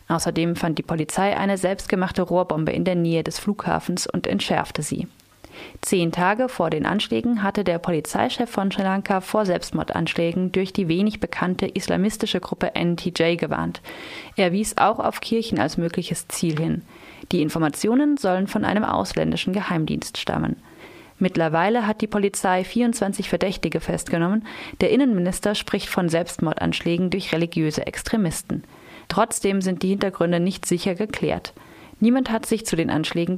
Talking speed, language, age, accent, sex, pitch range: 145 wpm, German, 30-49, German, female, 170-210 Hz